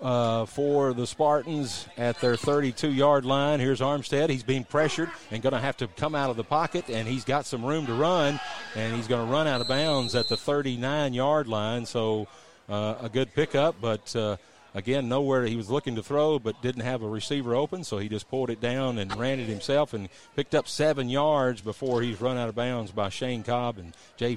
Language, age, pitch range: English, 40-59, 115-145 Hz